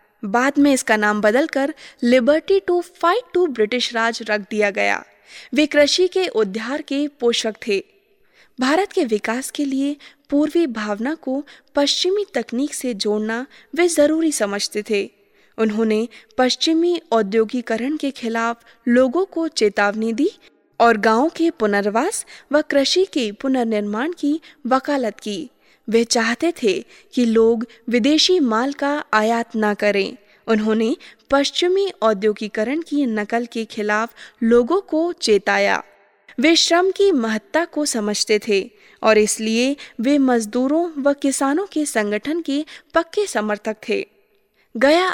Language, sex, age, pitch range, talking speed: Hindi, female, 20-39, 220-305 Hz, 130 wpm